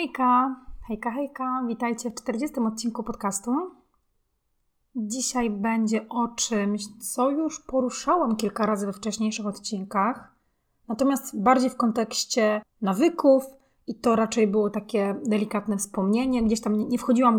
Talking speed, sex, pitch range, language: 130 wpm, female, 215-260 Hz, Polish